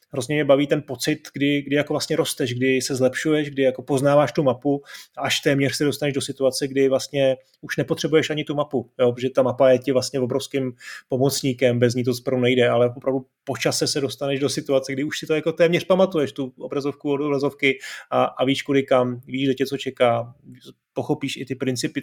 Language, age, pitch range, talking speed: Czech, 30-49, 130-150 Hz, 210 wpm